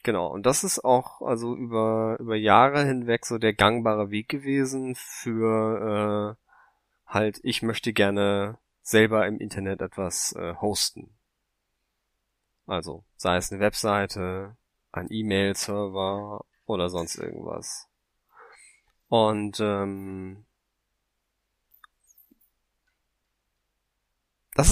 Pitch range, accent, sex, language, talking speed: 105-125 Hz, German, male, German, 95 wpm